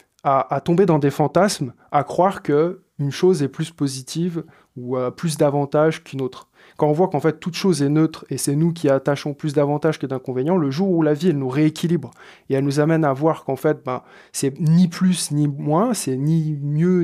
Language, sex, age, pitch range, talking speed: French, male, 20-39, 140-175 Hz, 220 wpm